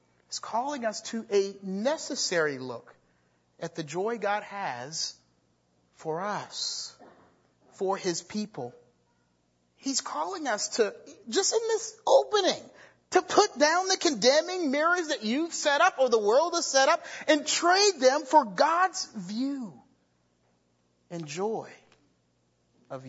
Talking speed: 130 wpm